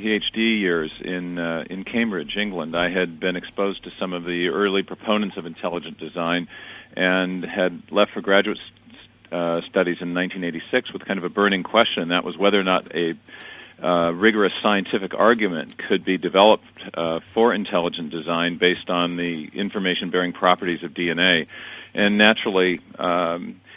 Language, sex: English, male